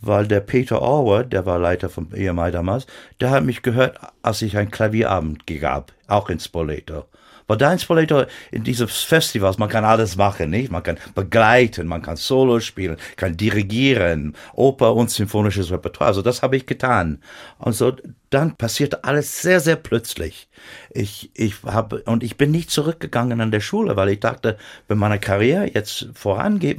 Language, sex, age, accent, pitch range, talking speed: German, male, 60-79, German, 95-125 Hz, 175 wpm